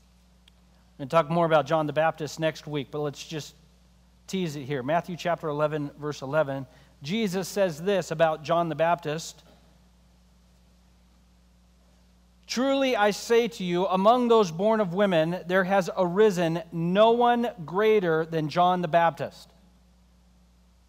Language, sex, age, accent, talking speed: English, male, 40-59, American, 140 wpm